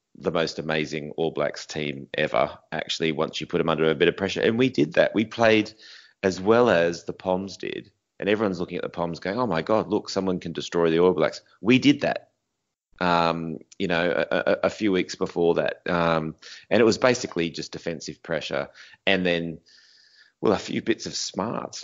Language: English